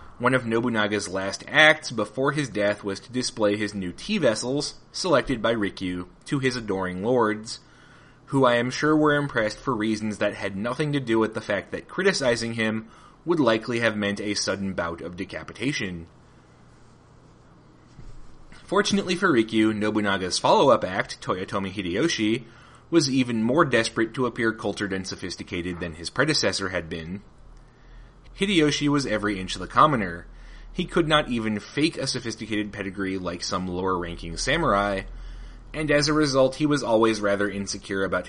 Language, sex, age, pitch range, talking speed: English, male, 30-49, 100-135 Hz, 160 wpm